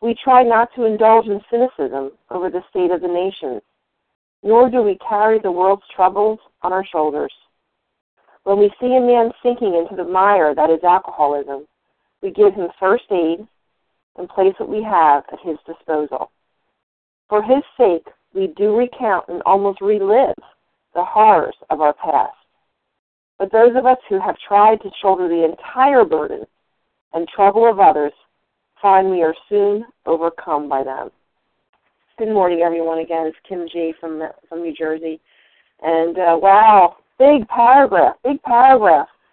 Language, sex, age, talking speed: English, female, 50-69, 155 wpm